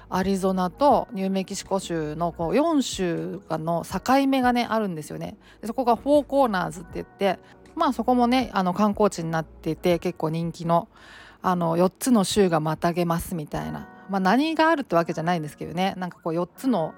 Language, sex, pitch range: Japanese, female, 165-215 Hz